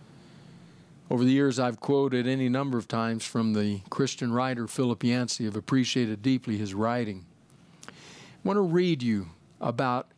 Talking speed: 160 wpm